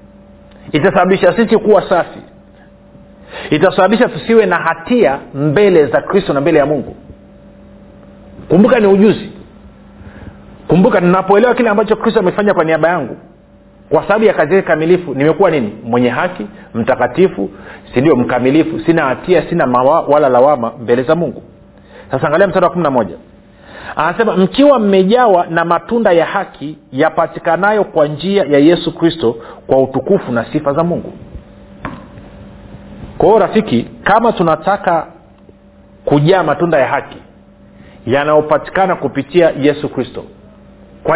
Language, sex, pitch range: Swahili, male, 140-195 Hz